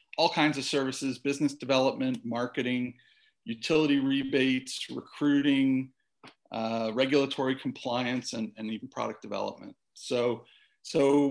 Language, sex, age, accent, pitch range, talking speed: English, male, 40-59, American, 115-145 Hz, 105 wpm